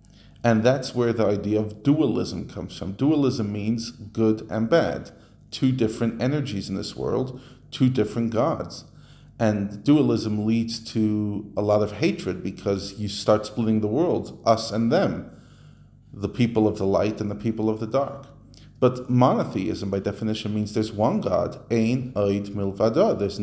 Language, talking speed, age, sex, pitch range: English, 160 wpm, 40-59, male, 110-135 Hz